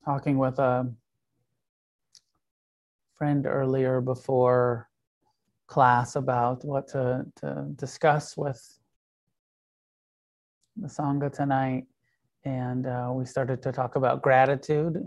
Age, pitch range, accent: 30-49, 125-140 Hz, American